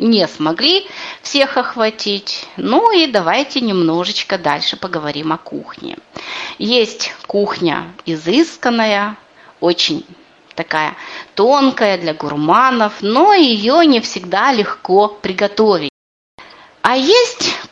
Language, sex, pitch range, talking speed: Russian, female, 200-330 Hz, 95 wpm